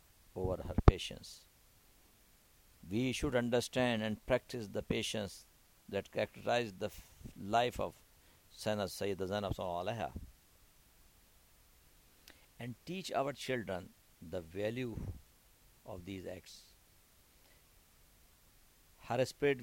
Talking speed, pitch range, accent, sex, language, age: 90 wpm, 95-125 Hz, Indian, male, English, 60-79